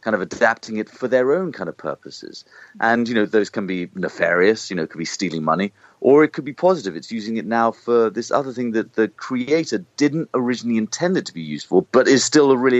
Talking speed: 250 wpm